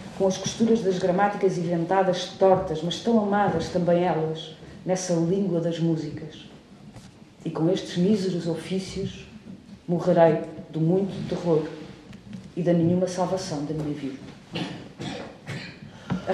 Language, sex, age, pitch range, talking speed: Portuguese, female, 40-59, 175-210 Hz, 120 wpm